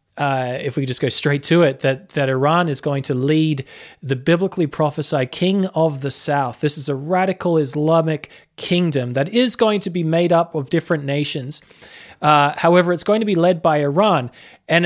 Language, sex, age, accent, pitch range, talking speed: English, male, 20-39, Australian, 150-185 Hz, 195 wpm